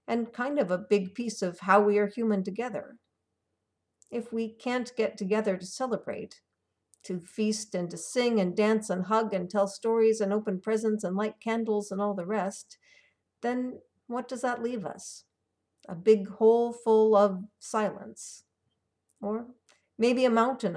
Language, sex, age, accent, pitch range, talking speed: English, female, 50-69, American, 185-230 Hz, 165 wpm